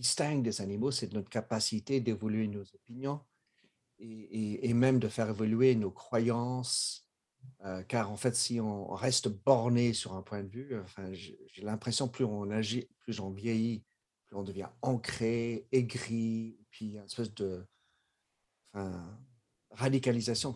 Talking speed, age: 155 wpm, 50-69